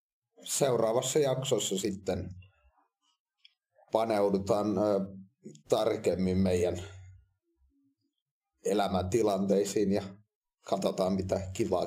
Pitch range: 95-110 Hz